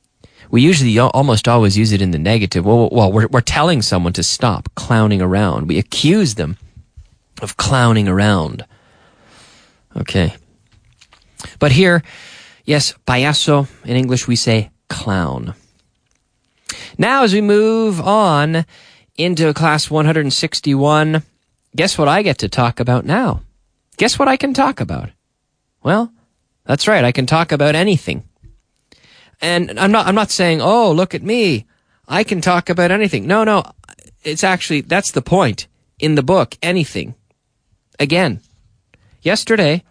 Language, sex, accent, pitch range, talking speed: English, male, American, 115-185 Hz, 140 wpm